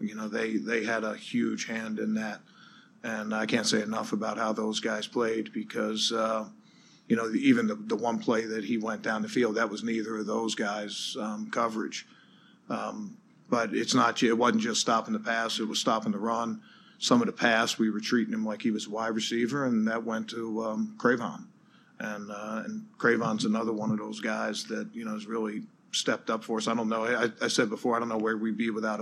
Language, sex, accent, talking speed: English, male, American, 225 wpm